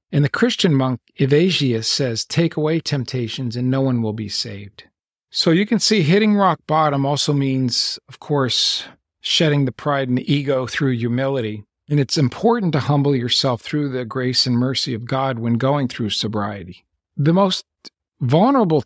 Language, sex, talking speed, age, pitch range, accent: English, male, 170 wpm, 50-69, 120-150 Hz, American